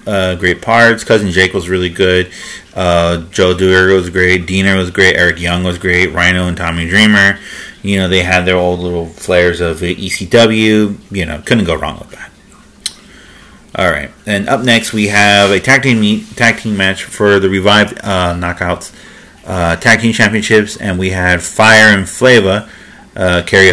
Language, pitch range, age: English, 85-105 Hz, 30-49